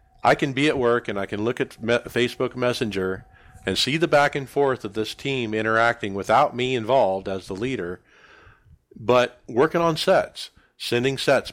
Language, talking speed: English, 175 wpm